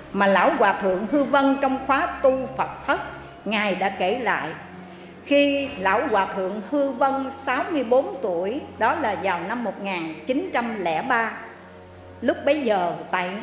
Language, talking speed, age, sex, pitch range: Vietnamese, 145 wpm, 60-79, female, 185-270 Hz